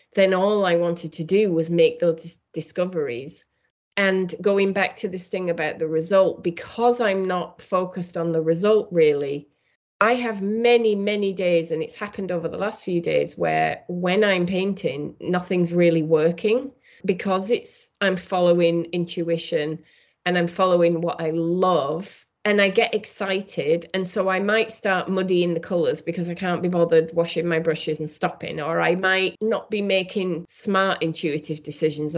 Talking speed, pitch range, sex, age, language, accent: 165 wpm, 165-200 Hz, female, 30-49, English, British